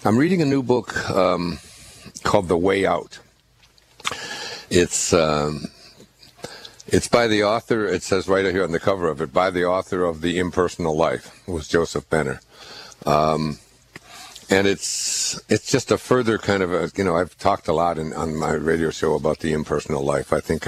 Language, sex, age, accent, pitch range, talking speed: English, male, 60-79, American, 75-90 Hz, 185 wpm